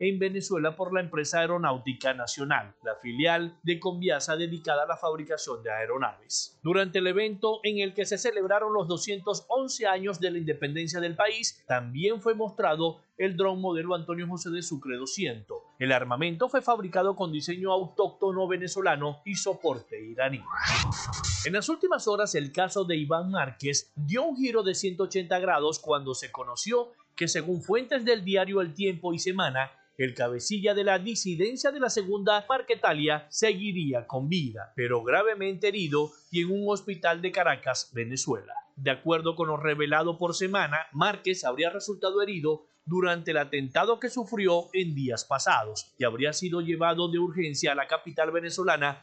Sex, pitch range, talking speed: male, 150-195 Hz, 165 wpm